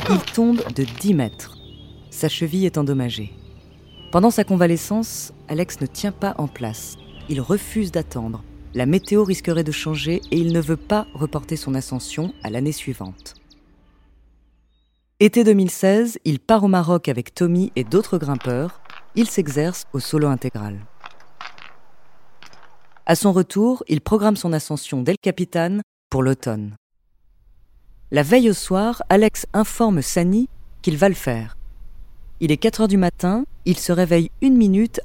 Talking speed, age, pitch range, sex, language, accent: 145 wpm, 30-49, 120-190 Hz, female, French, French